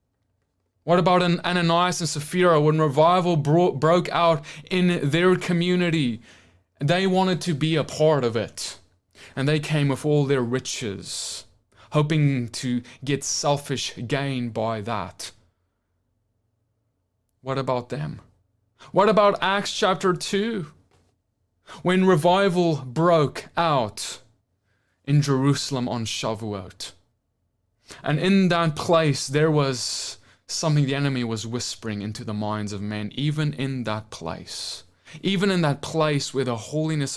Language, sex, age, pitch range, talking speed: English, male, 20-39, 105-155 Hz, 125 wpm